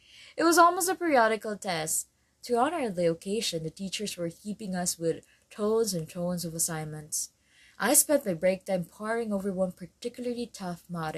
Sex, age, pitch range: female, 20-39, 165-220 Hz